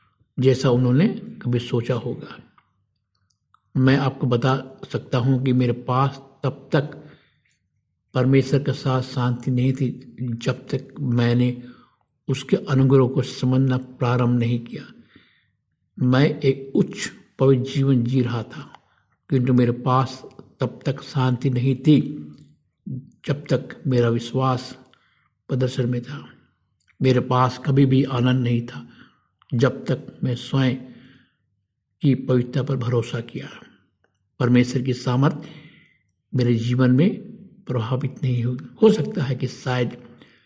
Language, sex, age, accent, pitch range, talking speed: Hindi, male, 50-69, native, 125-135 Hz, 125 wpm